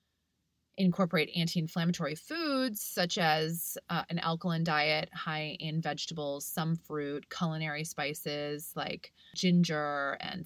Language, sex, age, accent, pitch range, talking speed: English, female, 20-39, American, 145-170 Hz, 110 wpm